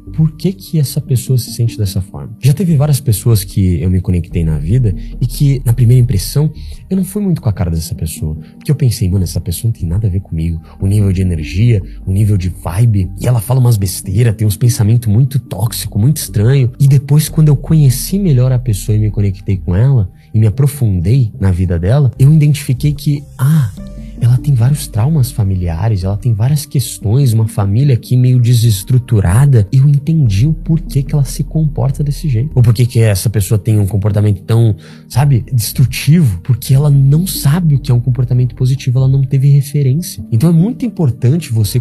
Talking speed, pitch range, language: 205 wpm, 100-140 Hz, Portuguese